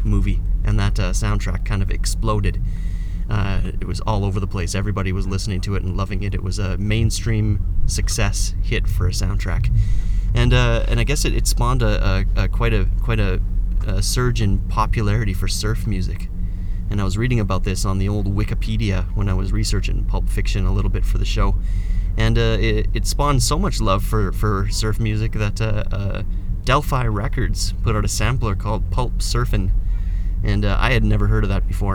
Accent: American